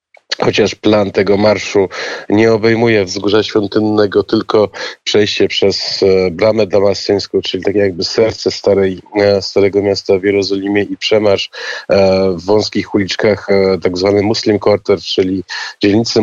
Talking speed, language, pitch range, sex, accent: 120 wpm, Polish, 100-105 Hz, male, native